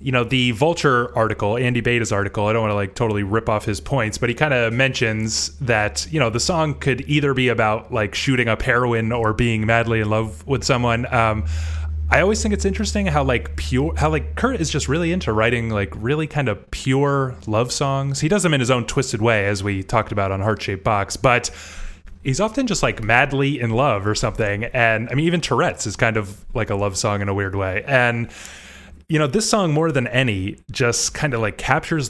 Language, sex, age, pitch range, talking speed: English, male, 20-39, 110-150 Hz, 230 wpm